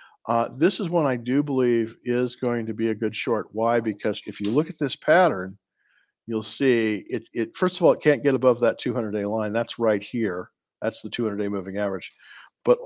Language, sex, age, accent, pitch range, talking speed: English, male, 50-69, American, 110-135 Hz, 210 wpm